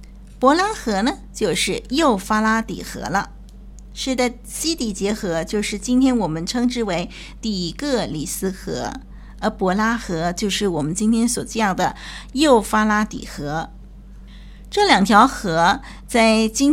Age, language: 50-69, Chinese